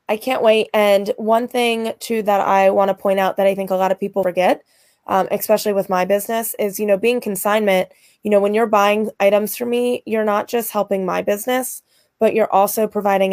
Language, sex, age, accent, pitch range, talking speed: English, female, 20-39, American, 180-210 Hz, 220 wpm